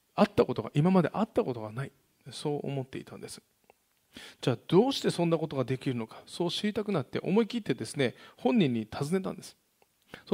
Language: Japanese